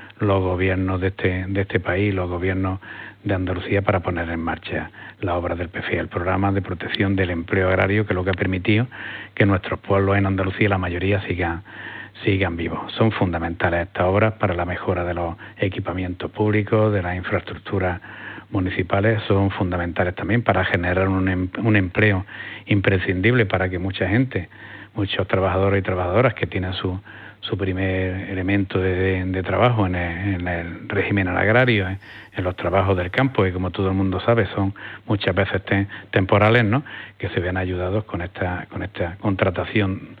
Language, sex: Spanish, male